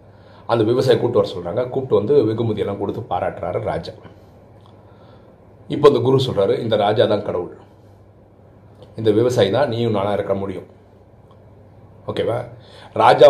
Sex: male